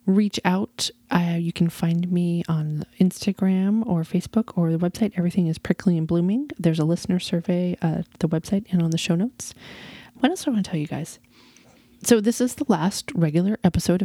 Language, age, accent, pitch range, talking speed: English, 30-49, American, 155-185 Hz, 205 wpm